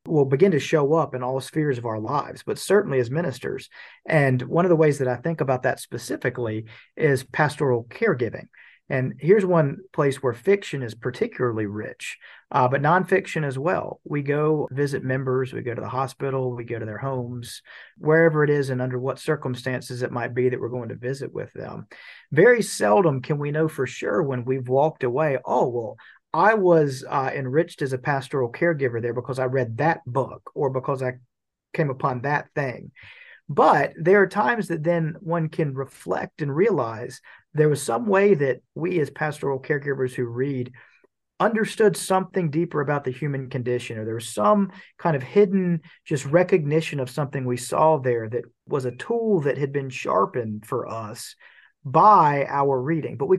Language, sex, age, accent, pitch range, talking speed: English, male, 40-59, American, 130-165 Hz, 185 wpm